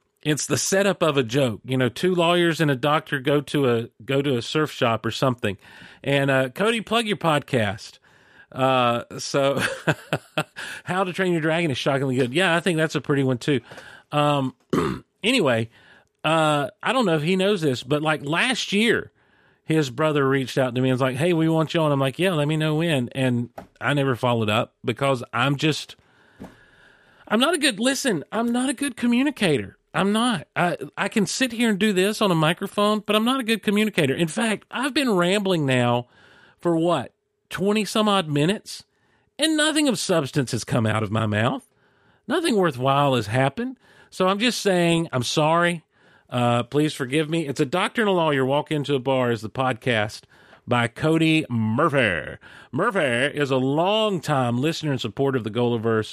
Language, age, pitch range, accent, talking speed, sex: English, 40-59, 130-185 Hz, American, 190 wpm, male